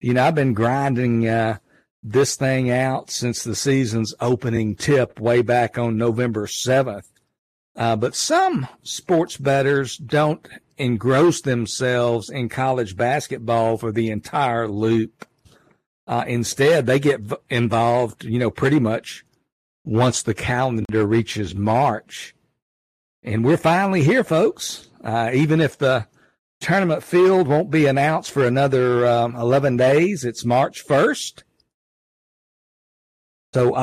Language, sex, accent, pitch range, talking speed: English, male, American, 115-145 Hz, 125 wpm